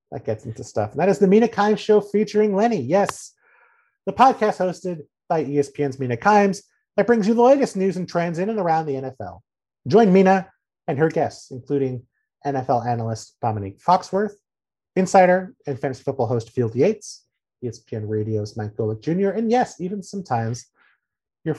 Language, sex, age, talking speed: English, male, 30-49, 170 wpm